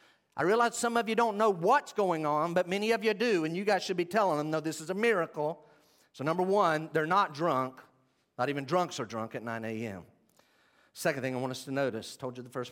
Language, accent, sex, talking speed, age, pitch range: English, American, male, 250 wpm, 50-69, 115-155 Hz